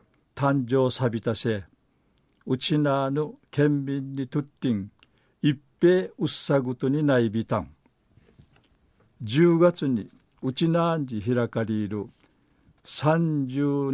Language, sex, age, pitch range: Japanese, male, 60-79, 120-150 Hz